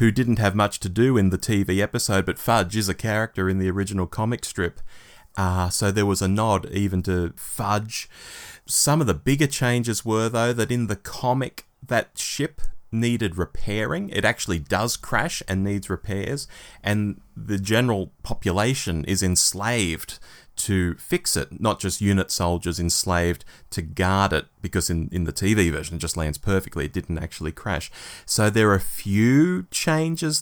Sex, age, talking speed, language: male, 30-49, 175 wpm, English